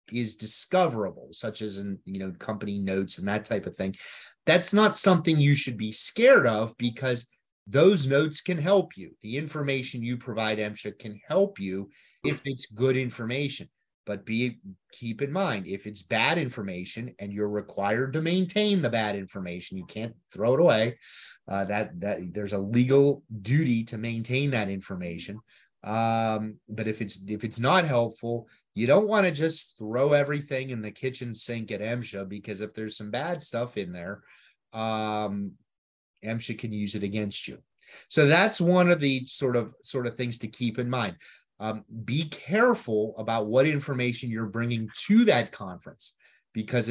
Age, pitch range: 30-49, 105-140 Hz